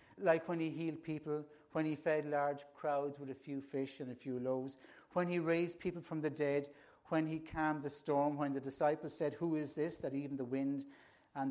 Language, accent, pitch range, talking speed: English, British, 140-165 Hz, 220 wpm